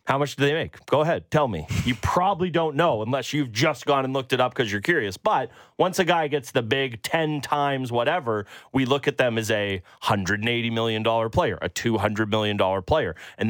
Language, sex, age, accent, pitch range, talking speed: English, male, 30-49, American, 115-155 Hz, 215 wpm